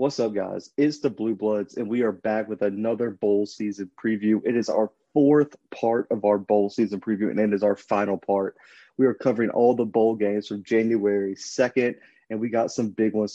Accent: American